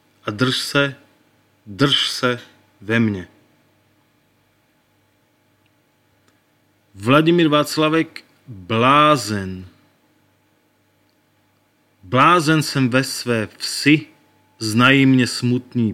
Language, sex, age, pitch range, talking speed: Slovak, male, 30-49, 110-140 Hz, 70 wpm